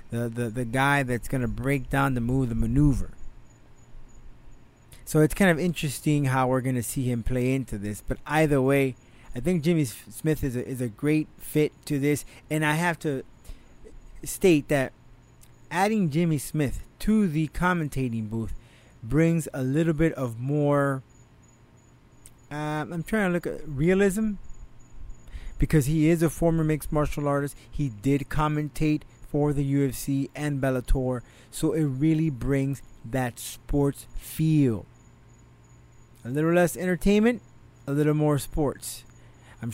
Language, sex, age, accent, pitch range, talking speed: English, male, 30-49, American, 120-155 Hz, 150 wpm